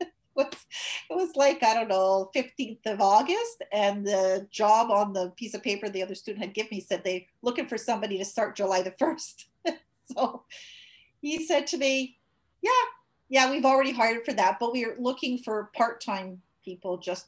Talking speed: 185 wpm